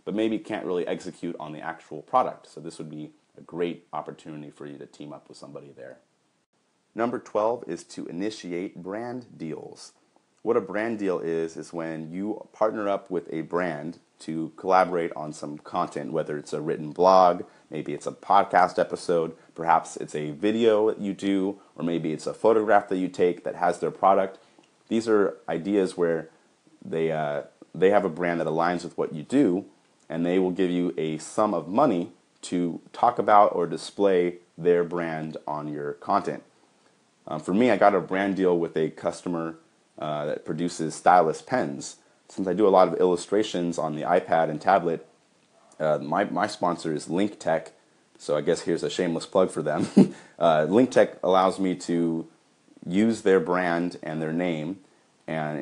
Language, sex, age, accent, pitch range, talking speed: English, male, 30-49, American, 80-95 Hz, 180 wpm